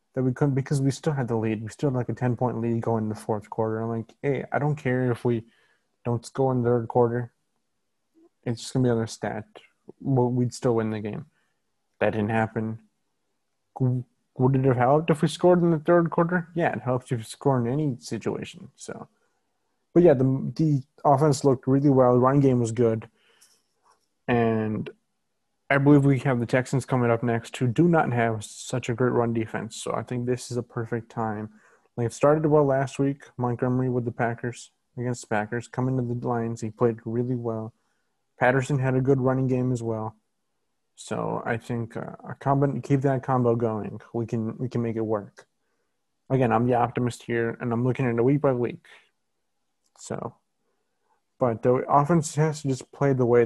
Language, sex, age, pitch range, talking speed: English, male, 20-39, 115-135 Hz, 205 wpm